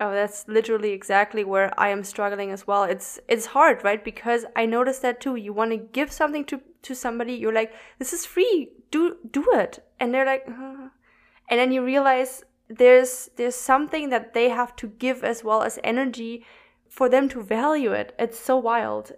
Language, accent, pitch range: English, German, 210-250 Hz